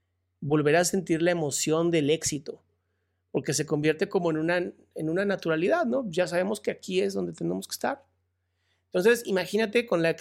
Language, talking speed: Spanish, 175 wpm